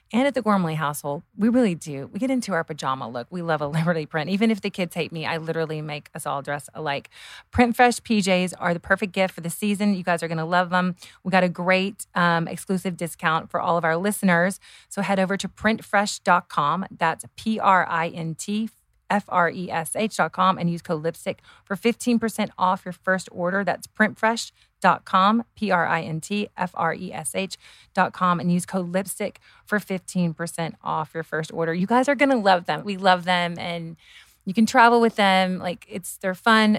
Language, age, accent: English, 30-49, American